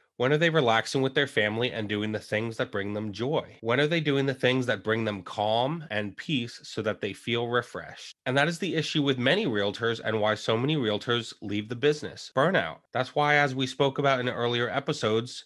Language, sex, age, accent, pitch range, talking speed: English, male, 20-39, American, 110-140 Hz, 225 wpm